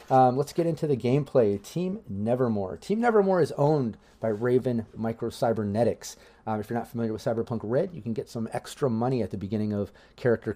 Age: 30-49